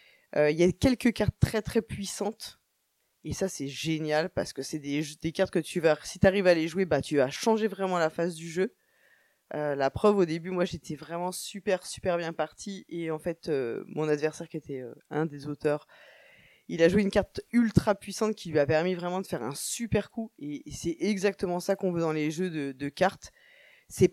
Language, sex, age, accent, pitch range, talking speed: French, female, 20-39, French, 160-205 Hz, 230 wpm